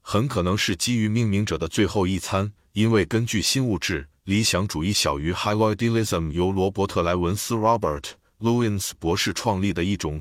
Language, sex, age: Chinese, male, 50-69